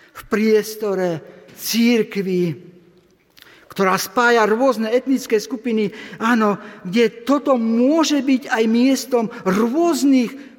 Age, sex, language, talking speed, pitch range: 50-69, male, Slovak, 90 wpm, 190-255 Hz